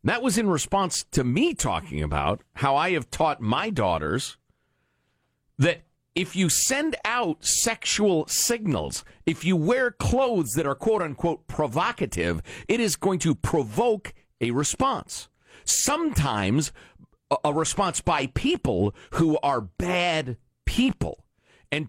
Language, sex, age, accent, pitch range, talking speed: English, male, 50-69, American, 125-200 Hz, 125 wpm